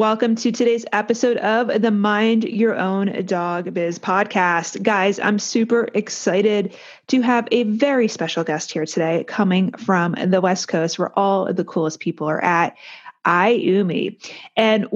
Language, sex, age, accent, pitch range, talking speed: English, female, 30-49, American, 180-235 Hz, 155 wpm